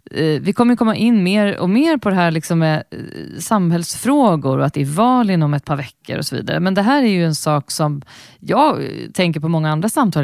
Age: 30-49